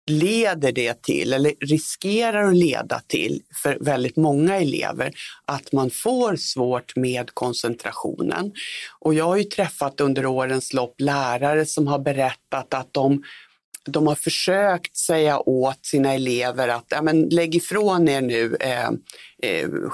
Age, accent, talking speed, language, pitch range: 60-79, native, 140 wpm, Swedish, 135-170 Hz